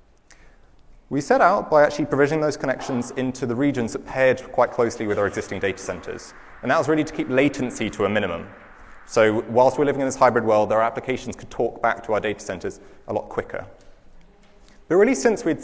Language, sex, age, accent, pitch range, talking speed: English, male, 30-49, British, 120-160 Hz, 205 wpm